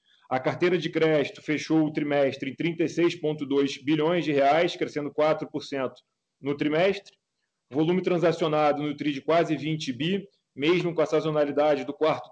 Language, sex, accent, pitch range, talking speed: Portuguese, male, Brazilian, 150-170 Hz, 145 wpm